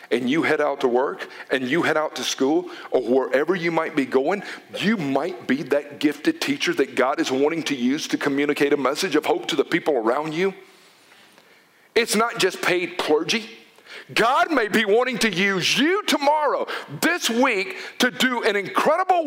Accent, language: American, English